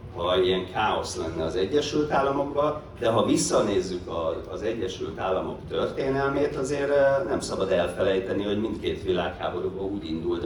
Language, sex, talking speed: Hungarian, male, 130 wpm